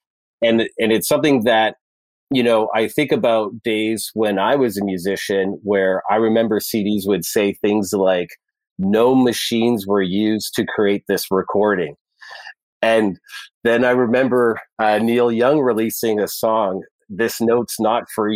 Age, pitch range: 40-59, 100-115 Hz